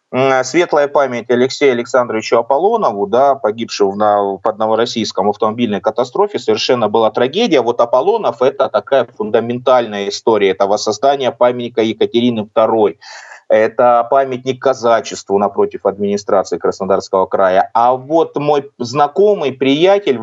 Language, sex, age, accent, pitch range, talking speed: Russian, male, 30-49, native, 115-145 Hz, 110 wpm